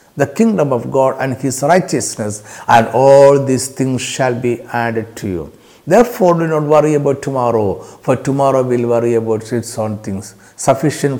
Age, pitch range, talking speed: 60-79, 115-180 Hz, 165 wpm